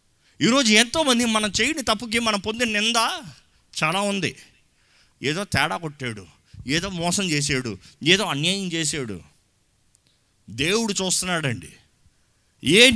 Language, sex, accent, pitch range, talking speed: Telugu, male, native, 145-220 Hz, 100 wpm